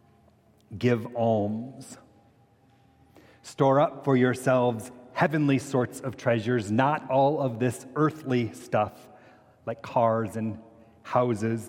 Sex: male